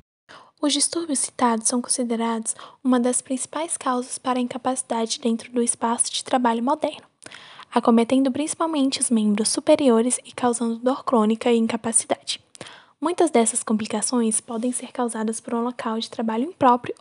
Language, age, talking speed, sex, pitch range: Portuguese, 10-29, 145 wpm, female, 225-265 Hz